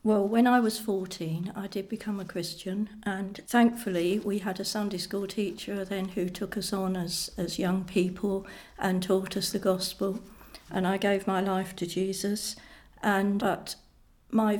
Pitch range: 185-205 Hz